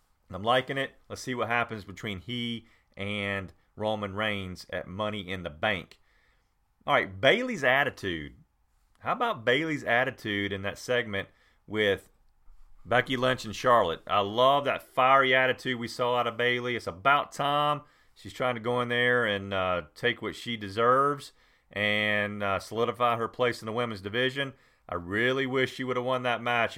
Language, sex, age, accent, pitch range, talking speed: English, male, 40-59, American, 100-125 Hz, 170 wpm